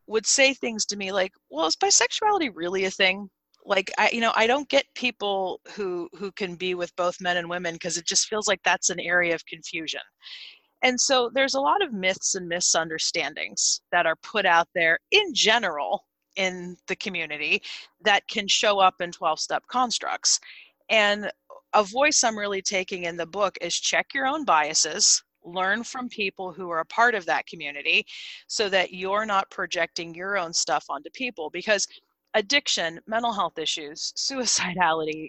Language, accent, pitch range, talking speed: English, American, 175-220 Hz, 180 wpm